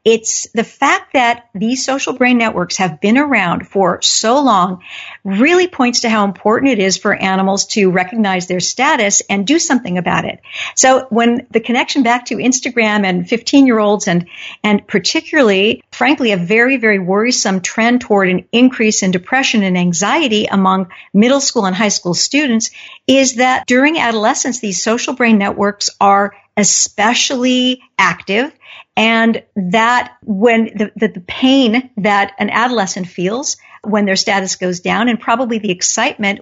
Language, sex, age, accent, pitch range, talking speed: English, female, 50-69, American, 200-255 Hz, 155 wpm